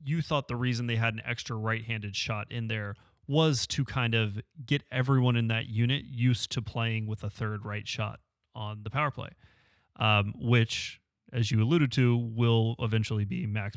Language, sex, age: English, male, 30-49